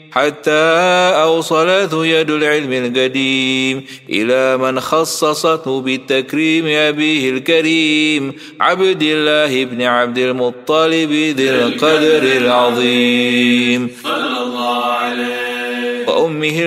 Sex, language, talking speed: male, Indonesian, 70 wpm